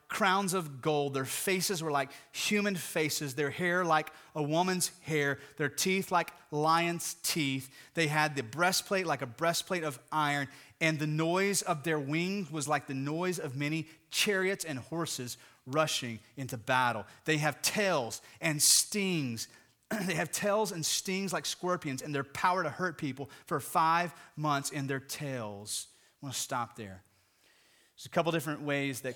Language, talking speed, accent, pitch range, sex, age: English, 170 wpm, American, 130-160 Hz, male, 30-49